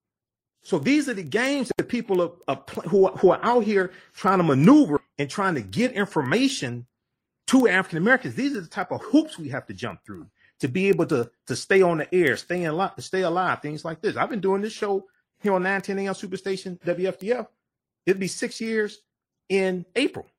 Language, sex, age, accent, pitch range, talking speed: English, male, 40-59, American, 125-190 Hz, 190 wpm